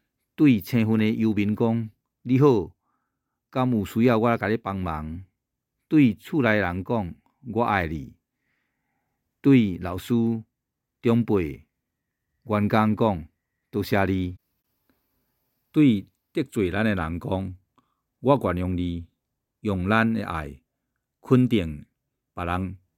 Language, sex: Chinese, male